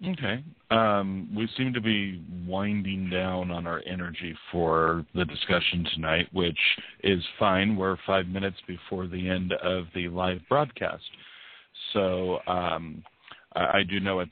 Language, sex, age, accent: English, male, 40-59, American